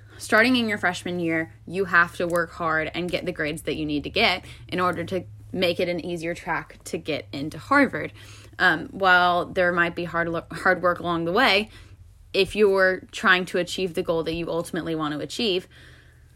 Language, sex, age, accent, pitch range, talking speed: English, female, 10-29, American, 165-190 Hz, 205 wpm